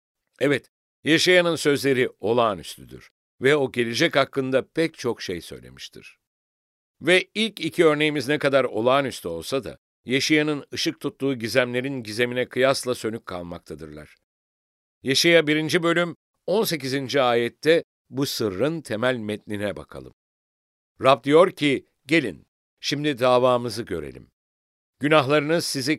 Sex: male